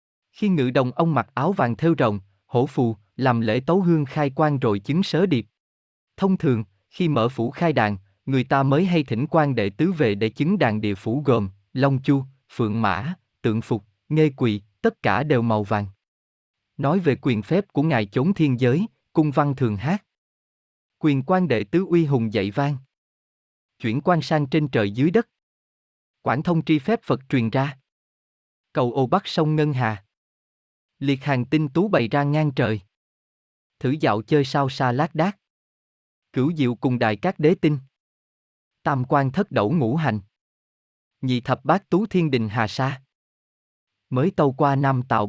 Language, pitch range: Vietnamese, 115-155 Hz